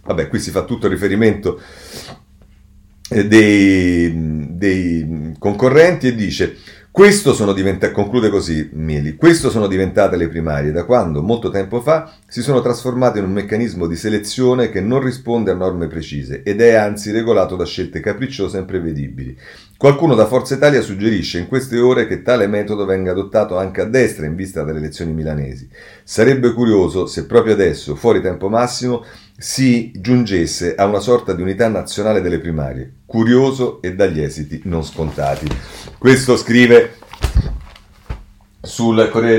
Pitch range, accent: 90-120 Hz, native